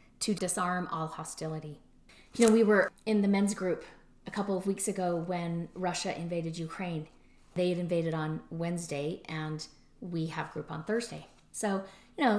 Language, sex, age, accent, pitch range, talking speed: English, female, 30-49, American, 165-200 Hz, 170 wpm